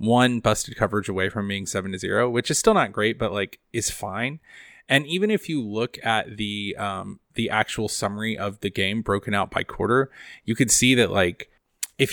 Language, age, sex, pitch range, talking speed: English, 20-39, male, 105-125 Hz, 210 wpm